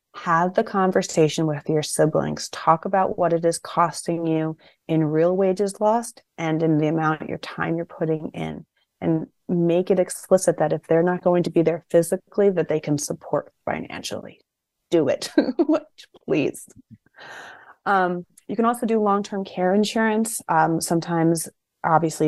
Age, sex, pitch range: 30-49, female, 155-190 Hz